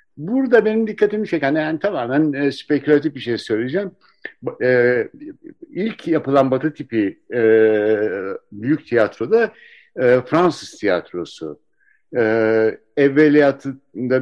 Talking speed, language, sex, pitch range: 105 wpm, Turkish, male, 115-160 Hz